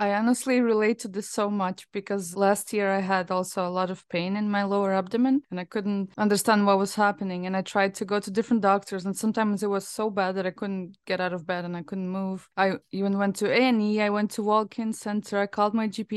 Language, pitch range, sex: English, 190-220 Hz, female